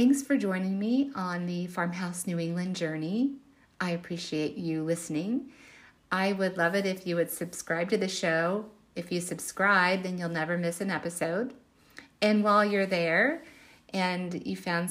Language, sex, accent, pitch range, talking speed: English, female, American, 170-205 Hz, 165 wpm